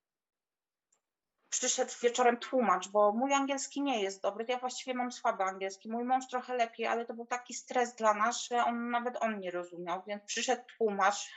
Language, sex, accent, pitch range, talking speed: Polish, female, native, 215-245 Hz, 180 wpm